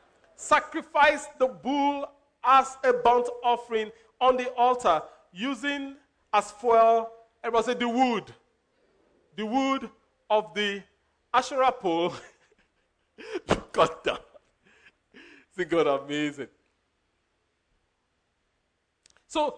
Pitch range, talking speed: 225-280 Hz, 85 wpm